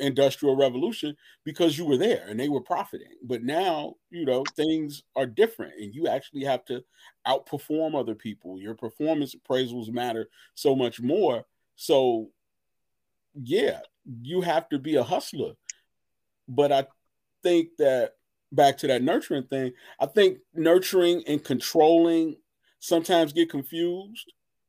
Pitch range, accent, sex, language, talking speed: 135-165 Hz, American, male, English, 140 wpm